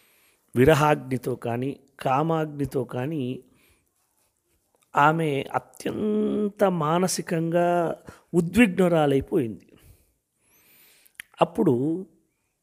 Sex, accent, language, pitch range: male, native, Telugu, 145-190 Hz